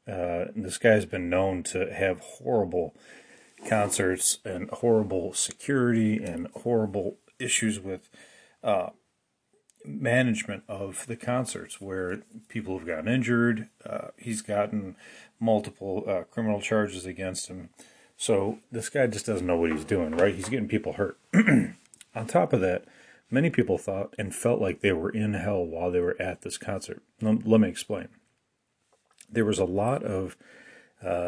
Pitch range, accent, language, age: 95-115 Hz, American, English, 40-59